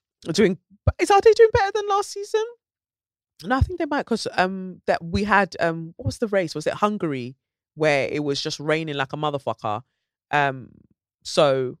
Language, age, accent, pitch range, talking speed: English, 20-39, British, 130-170 Hz, 190 wpm